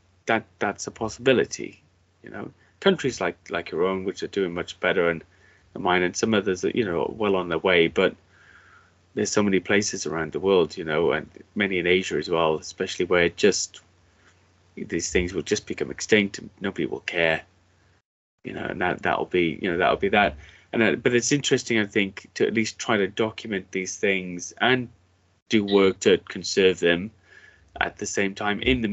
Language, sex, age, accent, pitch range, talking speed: English, male, 20-39, British, 85-115 Hz, 200 wpm